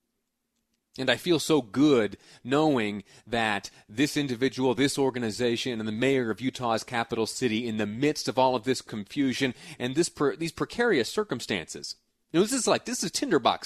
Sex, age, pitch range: male, 30-49, 105-145 Hz